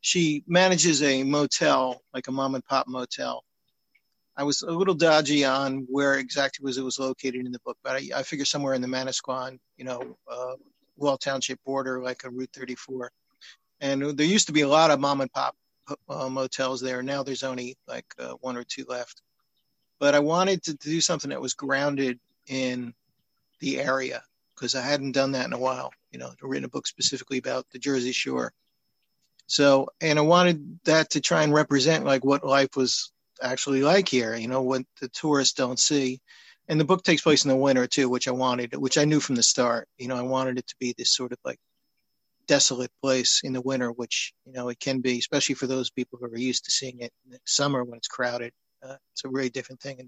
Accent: American